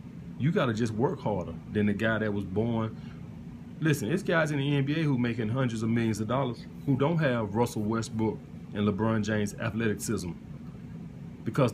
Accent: American